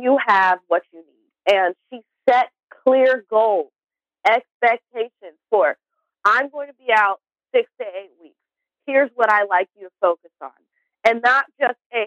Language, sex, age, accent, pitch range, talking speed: English, female, 30-49, American, 180-250 Hz, 165 wpm